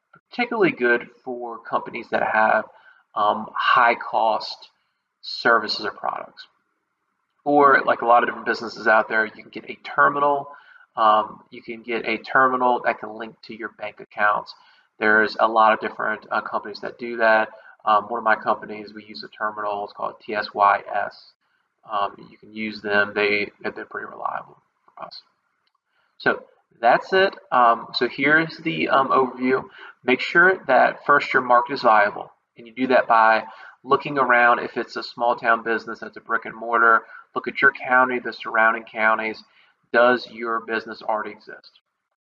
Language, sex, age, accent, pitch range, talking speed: English, male, 30-49, American, 110-125 Hz, 170 wpm